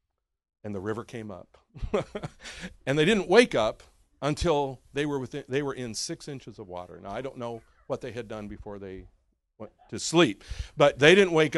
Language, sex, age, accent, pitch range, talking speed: English, male, 50-69, American, 95-160 Hz, 195 wpm